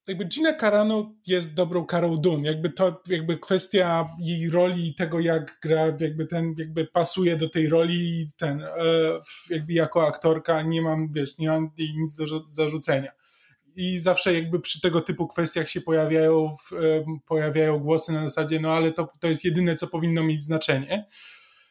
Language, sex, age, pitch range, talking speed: Polish, male, 20-39, 160-185 Hz, 165 wpm